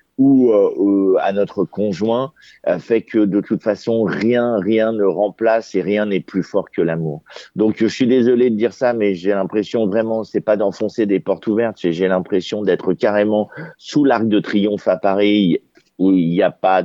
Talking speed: 185 wpm